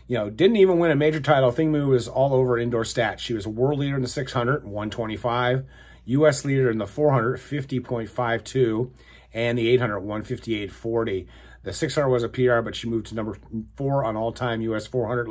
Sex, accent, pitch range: male, American, 100-125 Hz